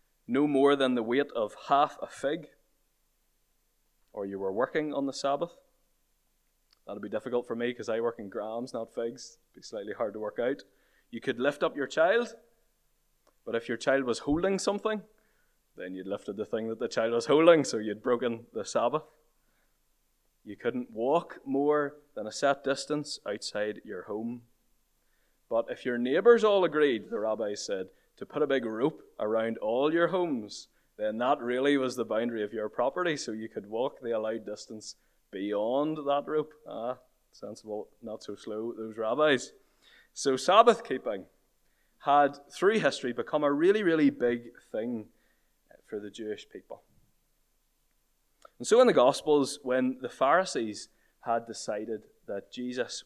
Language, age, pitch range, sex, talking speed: English, 20-39, 115-155 Hz, male, 165 wpm